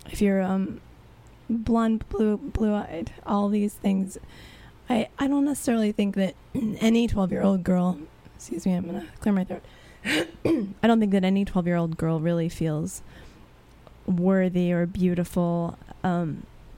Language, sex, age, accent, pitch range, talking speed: English, female, 20-39, American, 175-205 Hz, 155 wpm